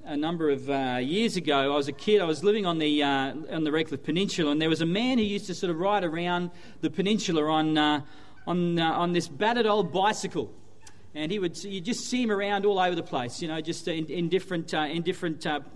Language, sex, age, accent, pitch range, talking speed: English, male, 40-59, Australian, 160-205 Hz, 250 wpm